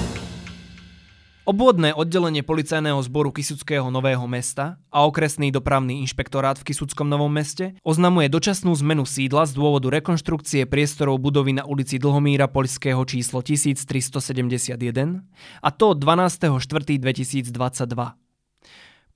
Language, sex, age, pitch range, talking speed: Slovak, male, 20-39, 130-155 Hz, 105 wpm